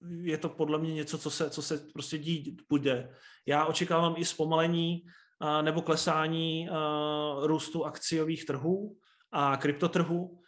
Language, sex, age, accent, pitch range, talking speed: Czech, male, 30-49, native, 145-160 Hz, 145 wpm